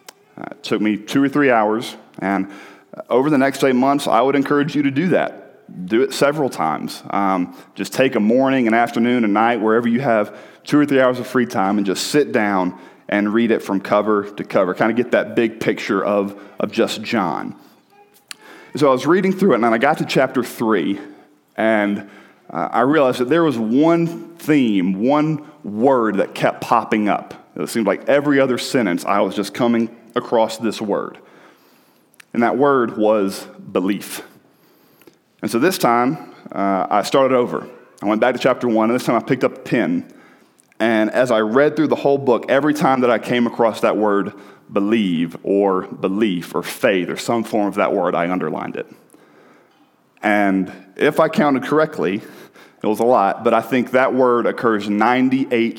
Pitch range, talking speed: 105-135 Hz, 195 wpm